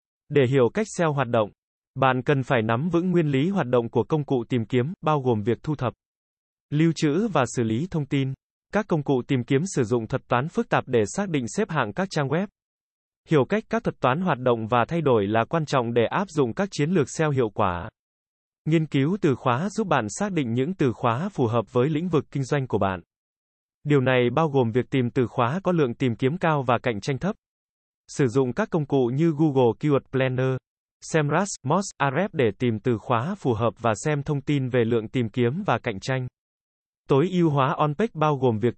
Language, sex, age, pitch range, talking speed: Vietnamese, male, 20-39, 125-165 Hz, 225 wpm